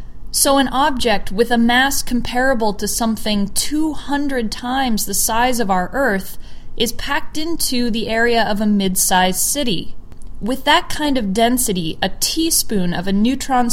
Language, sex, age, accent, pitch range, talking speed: English, female, 20-39, American, 200-255 Hz, 155 wpm